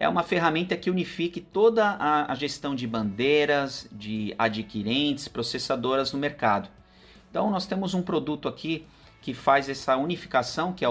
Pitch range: 120-170 Hz